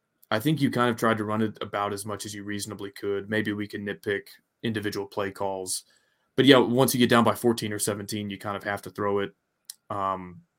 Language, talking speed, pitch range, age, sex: English, 230 wpm, 100-115 Hz, 20-39, male